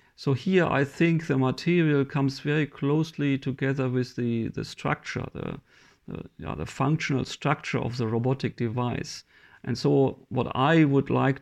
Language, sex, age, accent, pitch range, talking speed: English, male, 50-69, German, 125-145 Hz, 150 wpm